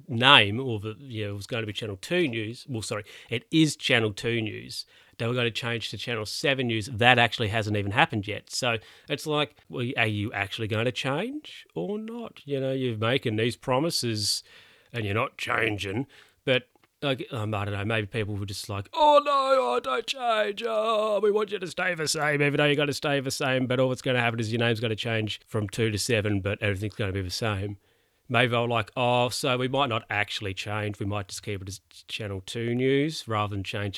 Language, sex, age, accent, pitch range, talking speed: English, male, 30-49, Australian, 105-140 Hz, 240 wpm